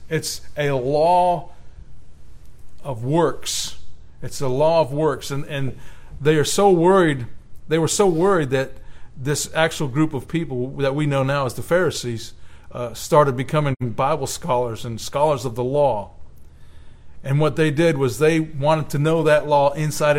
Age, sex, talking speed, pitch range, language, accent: 50-69, male, 165 wpm, 120-160 Hz, English, American